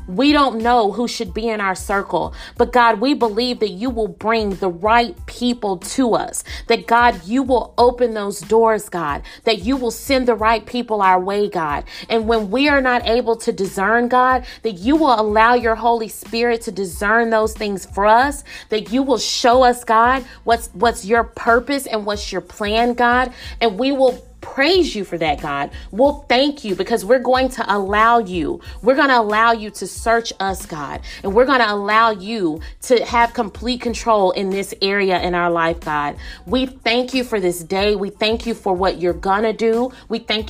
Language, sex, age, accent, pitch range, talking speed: English, female, 30-49, American, 200-245 Hz, 200 wpm